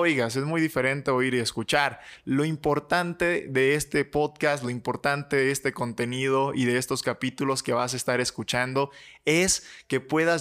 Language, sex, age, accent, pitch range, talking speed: Spanish, male, 20-39, Mexican, 130-155 Hz, 165 wpm